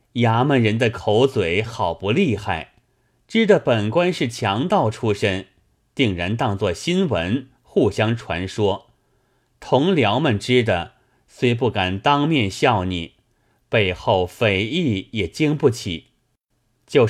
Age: 30-49